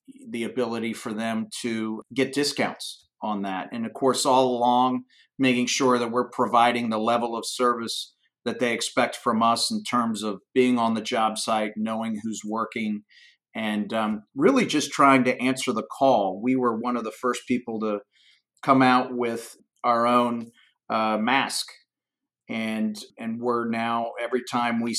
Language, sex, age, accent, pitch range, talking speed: English, male, 40-59, American, 110-125 Hz, 170 wpm